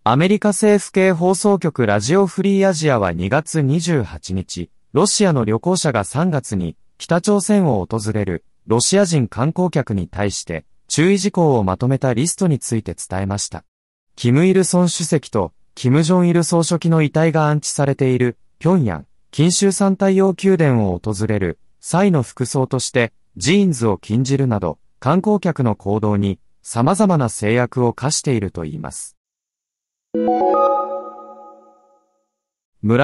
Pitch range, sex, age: 105-175 Hz, male, 30-49